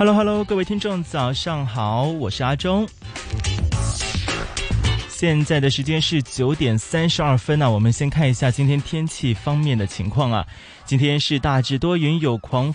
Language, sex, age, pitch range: Chinese, male, 20-39, 110-160 Hz